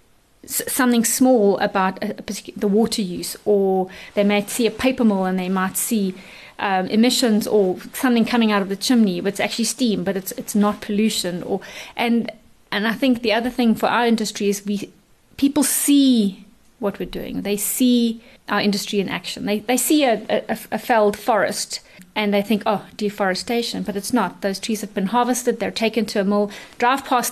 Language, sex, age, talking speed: English, female, 30-49, 195 wpm